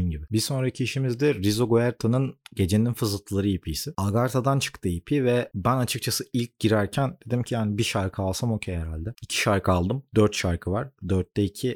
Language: Turkish